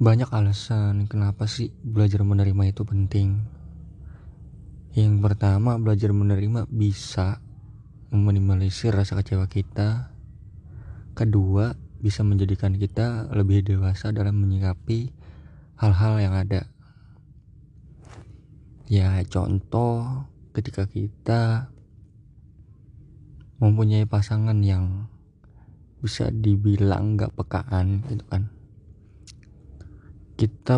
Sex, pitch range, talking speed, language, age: male, 100-110 Hz, 80 wpm, Indonesian, 20-39